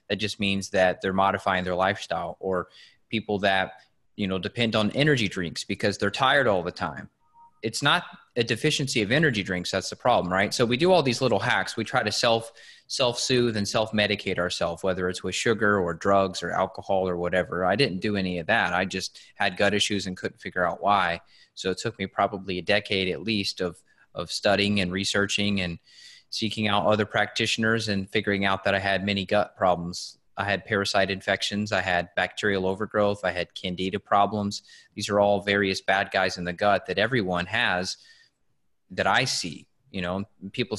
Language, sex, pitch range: English, male, 95-110 Hz